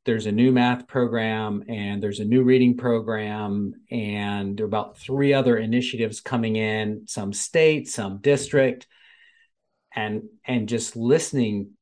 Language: English